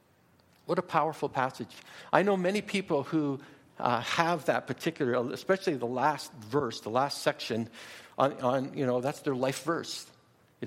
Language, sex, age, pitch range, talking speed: English, male, 60-79, 120-175 Hz, 165 wpm